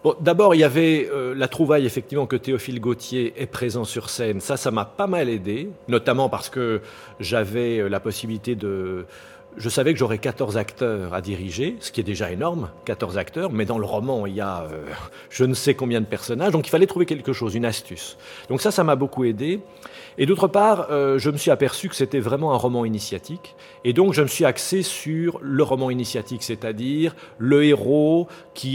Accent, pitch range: French, 110-150 Hz